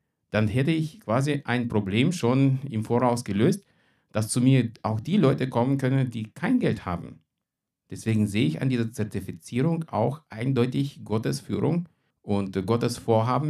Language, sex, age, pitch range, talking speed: German, male, 50-69, 105-140 Hz, 155 wpm